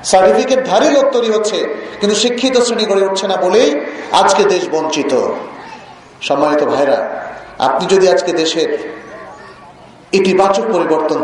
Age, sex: 40-59, male